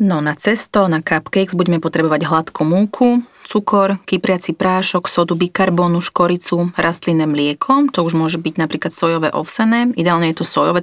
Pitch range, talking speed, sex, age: 165-200 Hz, 155 wpm, female, 30-49